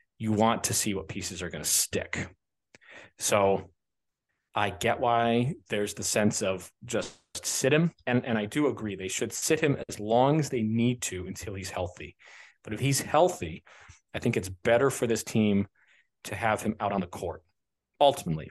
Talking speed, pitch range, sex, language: 190 wpm, 95-120 Hz, male, English